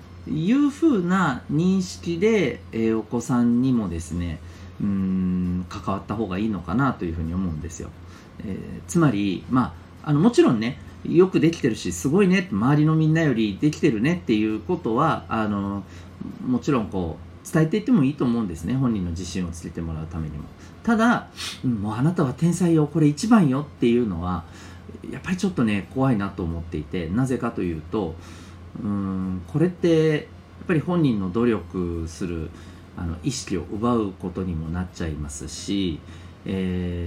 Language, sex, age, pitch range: Japanese, male, 40-59, 90-140 Hz